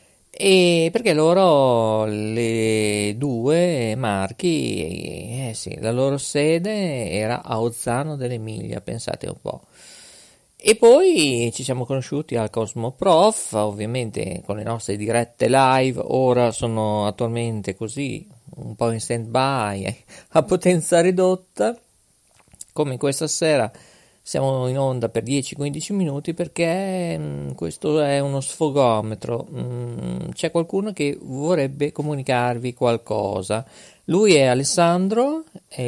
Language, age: Italian, 40-59